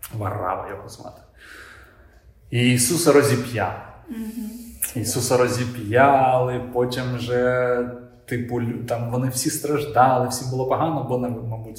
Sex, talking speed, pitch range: male, 105 wpm, 100-130 Hz